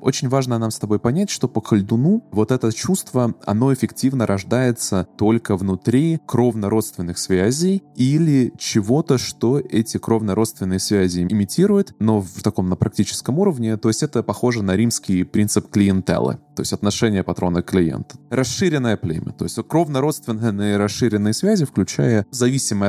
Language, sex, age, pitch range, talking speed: Russian, male, 20-39, 100-130 Hz, 145 wpm